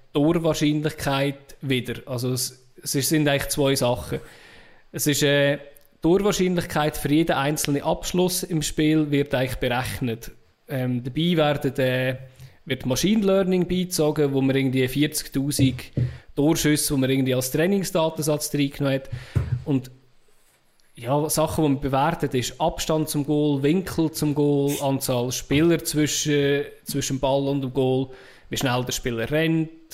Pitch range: 135-155 Hz